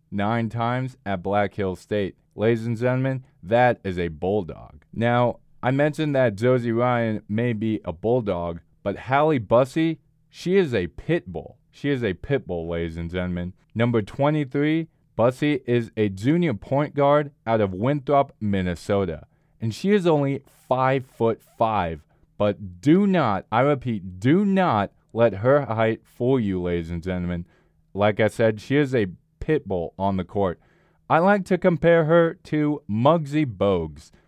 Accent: American